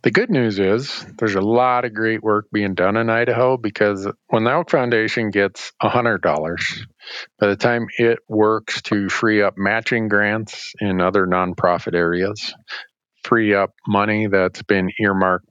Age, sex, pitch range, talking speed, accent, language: 50-69, male, 95-115 Hz, 160 wpm, American, English